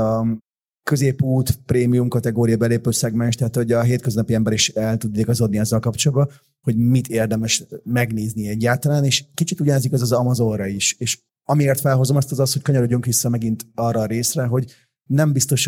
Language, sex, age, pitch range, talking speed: Hungarian, male, 30-49, 115-135 Hz, 170 wpm